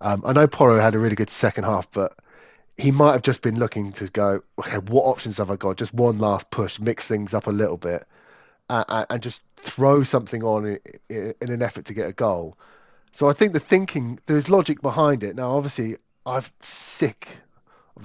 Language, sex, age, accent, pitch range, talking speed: English, male, 30-49, British, 105-135 Hz, 205 wpm